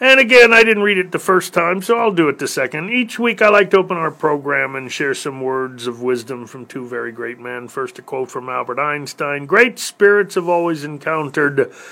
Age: 40-59